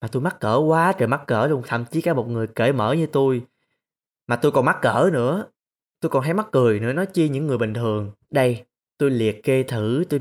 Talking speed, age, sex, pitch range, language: 245 wpm, 20-39, male, 130-180 Hz, Vietnamese